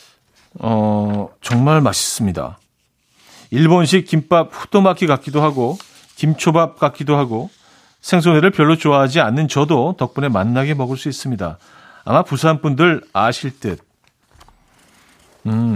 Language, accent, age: Korean, native, 40-59